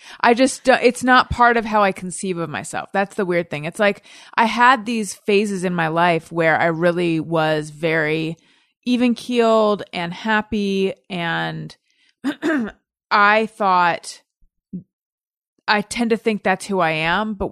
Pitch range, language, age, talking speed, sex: 165-215 Hz, English, 30-49, 160 wpm, female